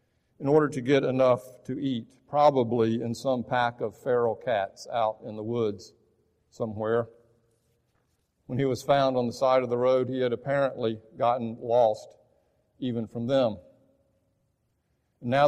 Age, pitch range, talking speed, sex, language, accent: 50-69, 110-130 Hz, 145 wpm, male, English, American